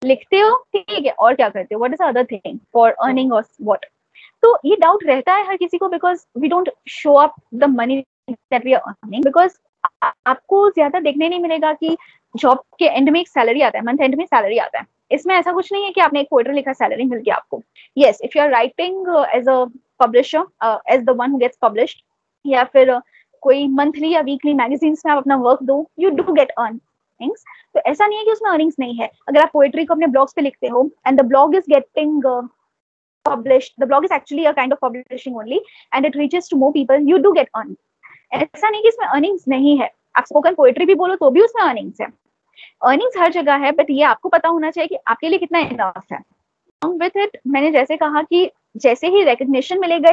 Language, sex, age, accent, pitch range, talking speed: Hindi, female, 20-39, native, 260-345 Hz, 125 wpm